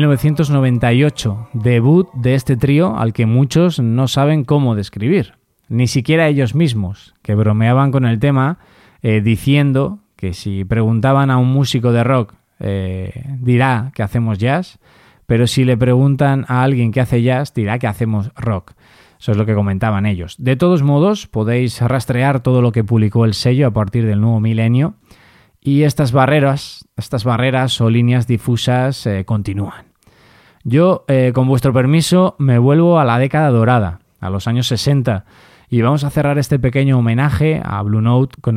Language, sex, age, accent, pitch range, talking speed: Spanish, male, 20-39, Spanish, 110-140 Hz, 165 wpm